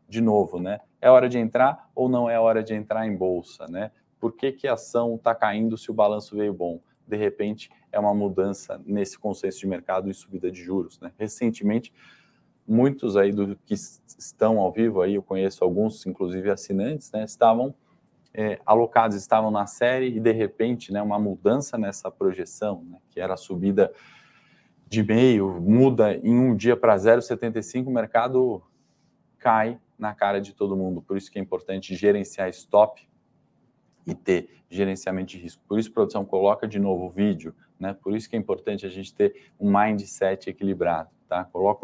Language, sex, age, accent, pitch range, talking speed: Portuguese, male, 20-39, Brazilian, 95-115 Hz, 180 wpm